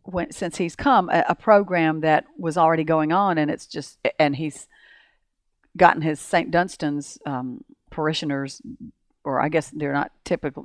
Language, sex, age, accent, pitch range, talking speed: English, female, 50-69, American, 145-185 Hz, 165 wpm